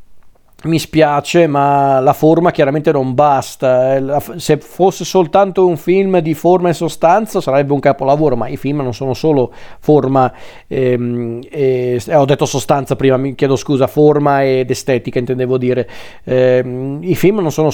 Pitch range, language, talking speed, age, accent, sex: 130-155 Hz, Italian, 160 wpm, 40-59, native, male